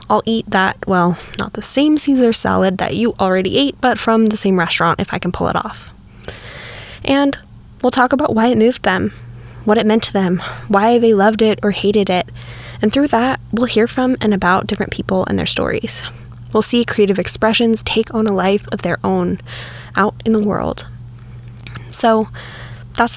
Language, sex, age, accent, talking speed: English, female, 10-29, American, 190 wpm